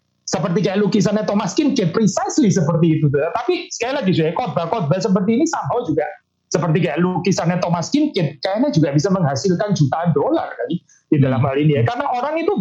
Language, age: Indonesian, 30-49